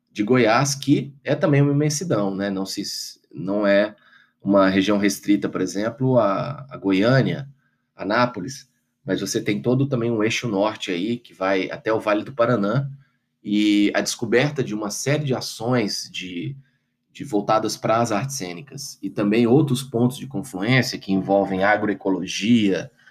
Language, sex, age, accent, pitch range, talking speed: Portuguese, male, 20-39, Brazilian, 100-135 Hz, 160 wpm